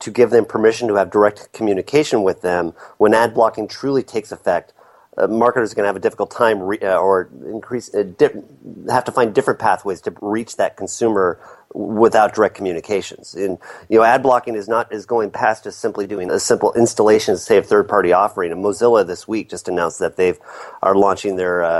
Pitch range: 90-115 Hz